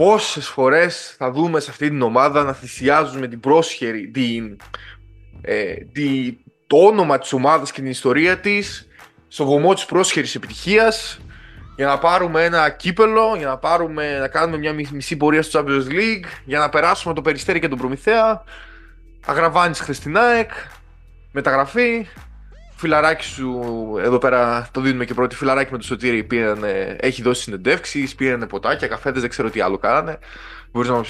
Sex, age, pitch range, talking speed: male, 20-39, 120-165 Hz, 155 wpm